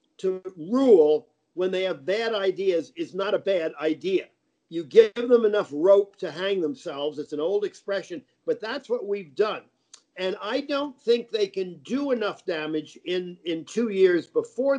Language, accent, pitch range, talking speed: English, American, 170-230 Hz, 175 wpm